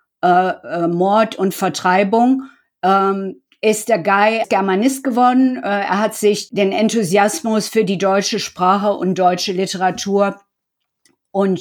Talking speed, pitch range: 125 wpm, 190-225 Hz